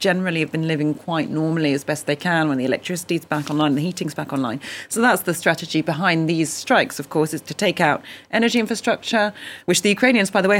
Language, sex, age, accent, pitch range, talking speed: English, female, 40-59, British, 160-205 Hz, 240 wpm